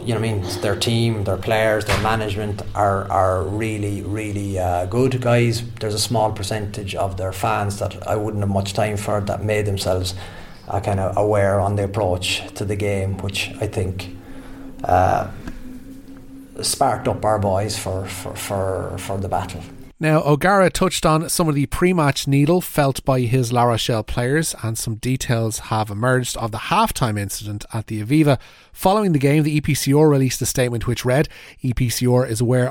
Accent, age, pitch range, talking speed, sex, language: Irish, 30-49, 105-140 Hz, 185 wpm, male, English